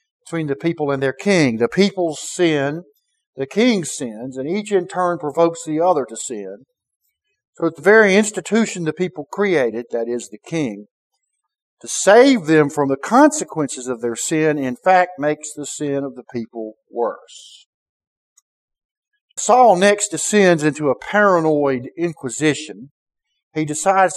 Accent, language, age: American, English, 50-69